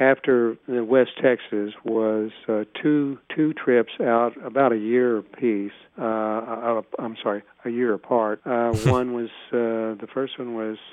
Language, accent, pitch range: English, American, 110-130 Hz